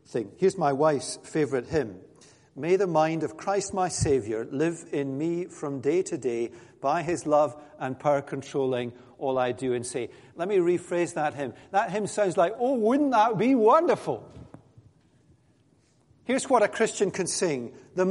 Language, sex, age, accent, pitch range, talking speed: English, male, 50-69, British, 145-210 Hz, 170 wpm